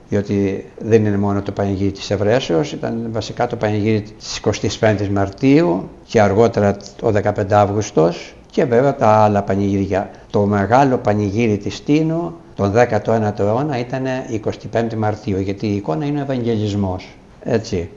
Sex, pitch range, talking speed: male, 100-120 Hz, 125 wpm